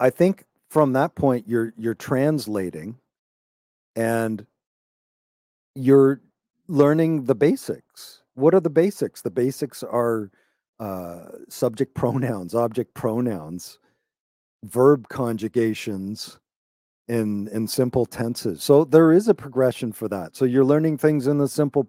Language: English